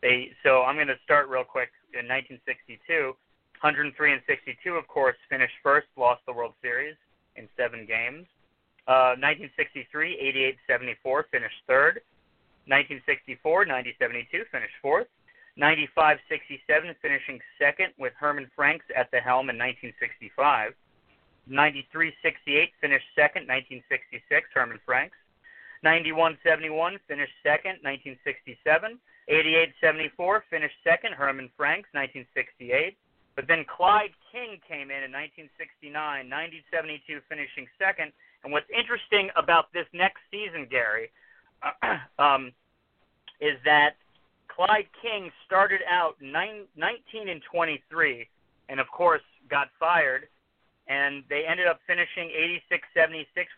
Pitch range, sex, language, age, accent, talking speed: 135-180 Hz, male, English, 30-49, American, 105 wpm